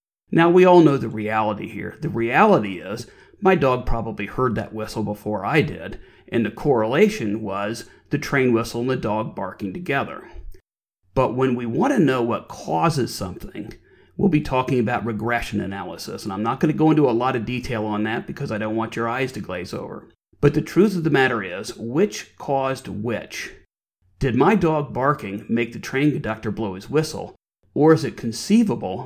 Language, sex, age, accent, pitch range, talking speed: English, male, 40-59, American, 110-145 Hz, 190 wpm